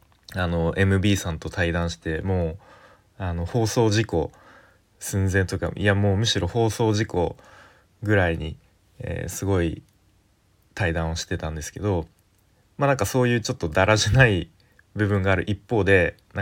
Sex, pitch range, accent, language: male, 85-110 Hz, native, Japanese